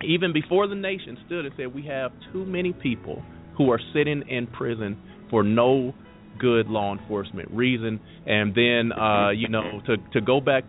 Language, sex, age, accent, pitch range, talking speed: English, male, 30-49, American, 110-140 Hz, 180 wpm